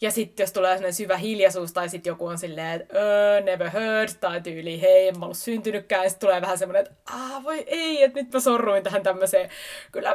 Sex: female